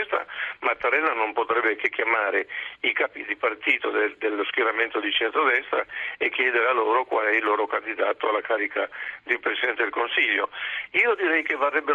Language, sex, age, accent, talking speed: Italian, male, 50-69, native, 165 wpm